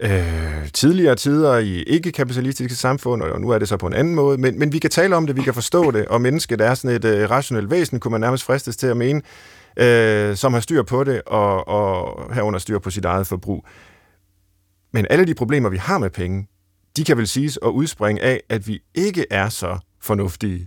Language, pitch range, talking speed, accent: Danish, 100-130 Hz, 210 wpm, native